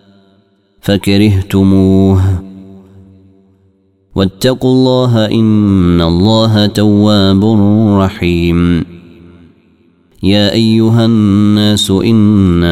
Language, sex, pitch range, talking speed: Arabic, male, 90-110 Hz, 50 wpm